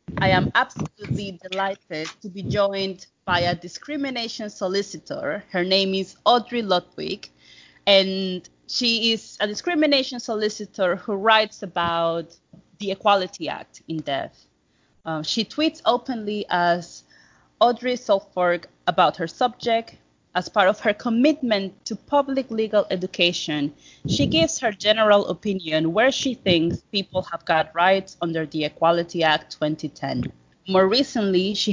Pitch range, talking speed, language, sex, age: 170-220 Hz, 130 wpm, English, female, 30-49